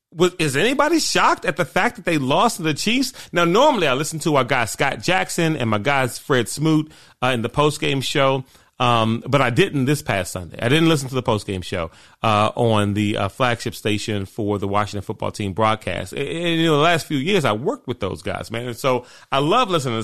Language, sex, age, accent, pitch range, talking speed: English, male, 30-49, American, 110-155 Hz, 230 wpm